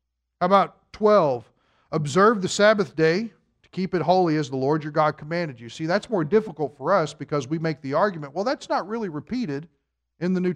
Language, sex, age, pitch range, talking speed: English, male, 50-69, 125-180 Hz, 210 wpm